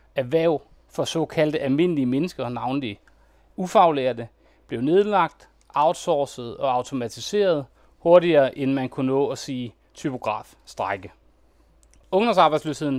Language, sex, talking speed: Danish, male, 100 wpm